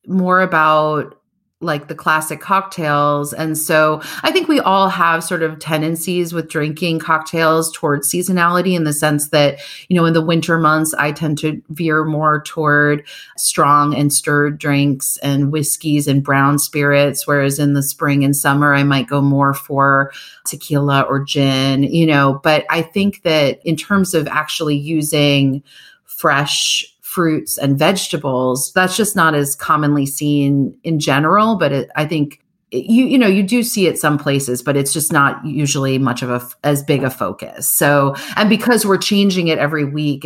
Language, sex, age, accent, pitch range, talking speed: English, female, 30-49, American, 140-165 Hz, 170 wpm